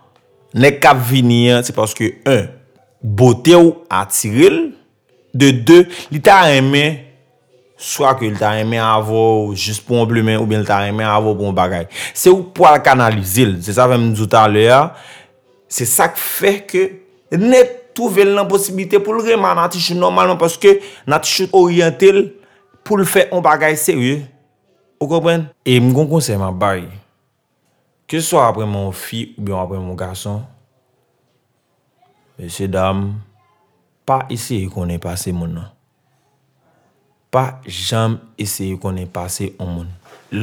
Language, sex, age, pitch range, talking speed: French, male, 30-49, 100-145 Hz, 155 wpm